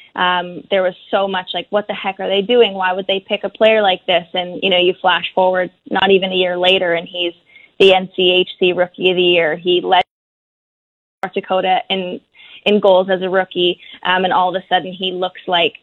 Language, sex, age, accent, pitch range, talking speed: English, female, 20-39, American, 180-210 Hz, 220 wpm